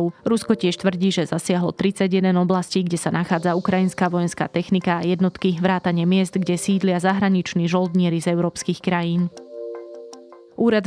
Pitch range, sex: 170-185 Hz, female